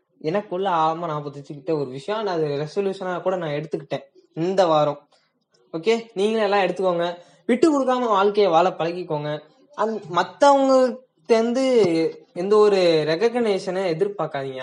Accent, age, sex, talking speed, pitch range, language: native, 20-39, female, 80 wpm, 180-235 Hz, Tamil